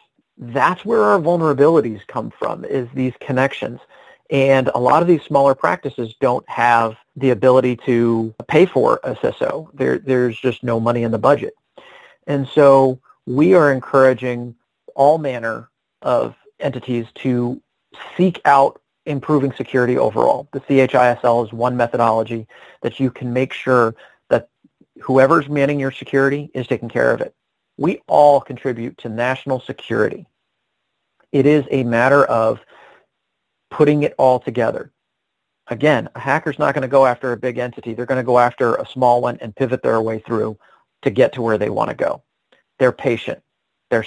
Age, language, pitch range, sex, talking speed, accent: 40-59, English, 120-140 Hz, male, 160 wpm, American